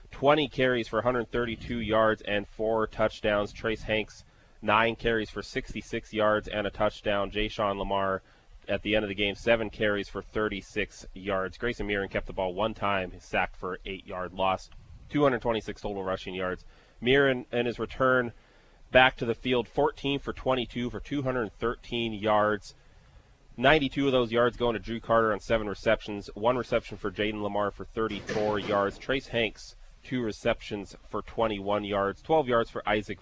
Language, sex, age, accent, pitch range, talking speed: English, male, 30-49, American, 100-120 Hz, 165 wpm